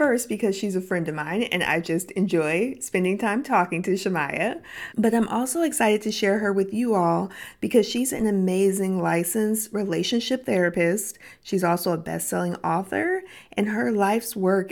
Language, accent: English, American